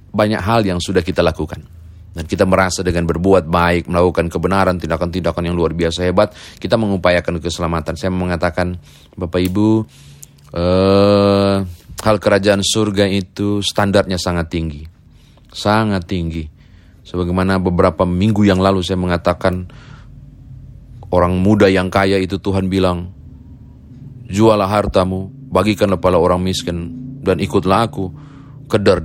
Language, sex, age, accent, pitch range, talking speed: Indonesian, male, 30-49, native, 85-100 Hz, 125 wpm